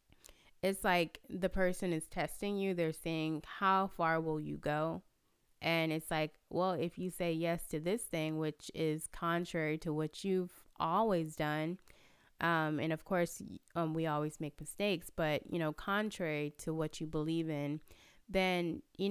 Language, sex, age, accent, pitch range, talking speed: English, female, 20-39, American, 155-185 Hz, 165 wpm